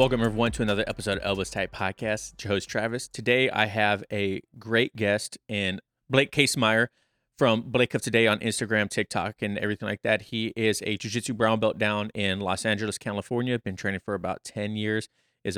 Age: 30-49